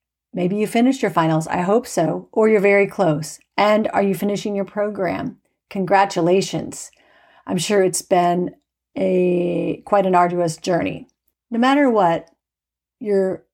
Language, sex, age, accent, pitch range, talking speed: English, female, 40-59, American, 180-220 Hz, 140 wpm